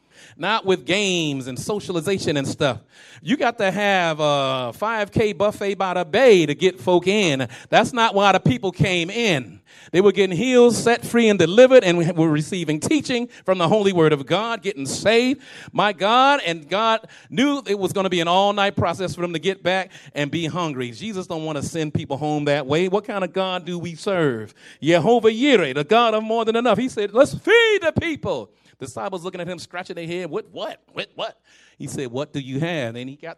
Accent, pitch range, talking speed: American, 170-245 Hz, 215 wpm